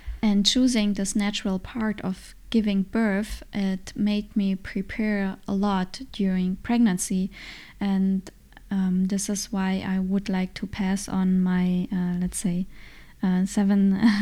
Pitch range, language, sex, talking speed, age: 190-210 Hz, English, female, 140 wpm, 20-39